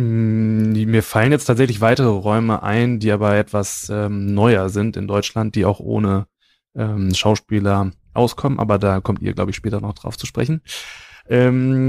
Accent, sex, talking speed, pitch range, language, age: German, male, 165 wpm, 100-115 Hz, German, 20-39